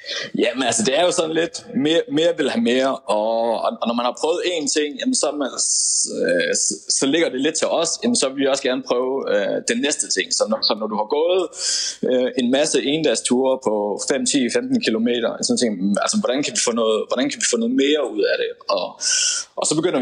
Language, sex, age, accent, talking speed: Danish, male, 20-39, native, 225 wpm